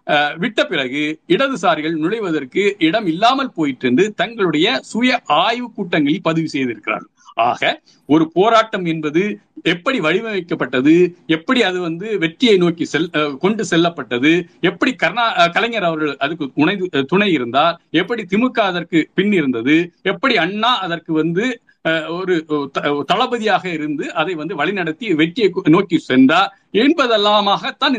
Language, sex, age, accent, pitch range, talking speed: Tamil, male, 50-69, native, 165-245 Hz, 110 wpm